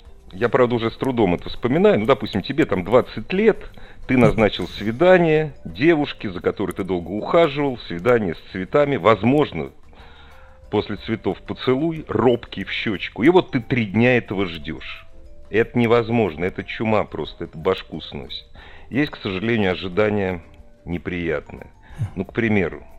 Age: 40-59